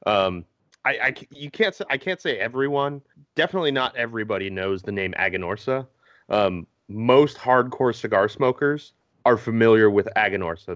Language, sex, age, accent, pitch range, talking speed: English, male, 30-49, American, 100-125 Hz, 145 wpm